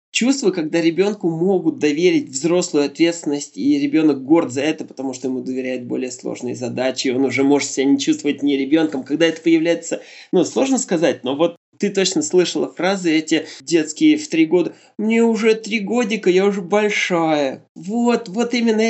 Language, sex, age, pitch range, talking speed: Russian, male, 20-39, 165-225 Hz, 175 wpm